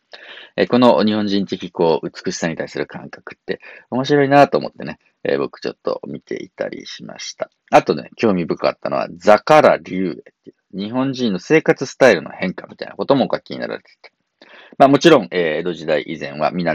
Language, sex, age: Japanese, male, 40-59